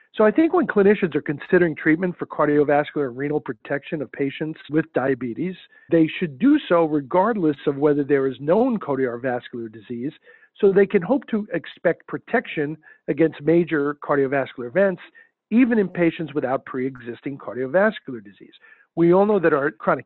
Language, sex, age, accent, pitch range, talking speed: English, male, 50-69, American, 140-205 Hz, 160 wpm